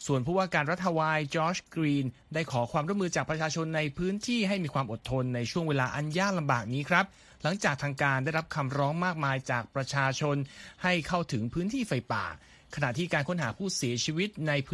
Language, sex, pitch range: Thai, male, 130-165 Hz